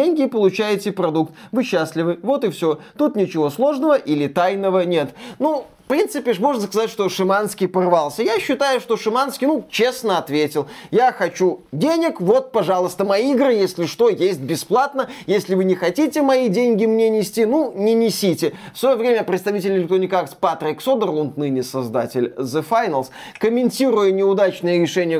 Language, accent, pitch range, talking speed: Russian, native, 170-255 Hz, 155 wpm